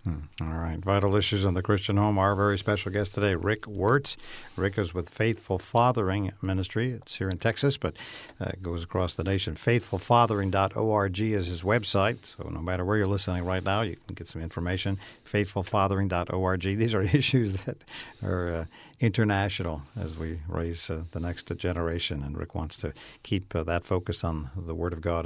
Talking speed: 185 wpm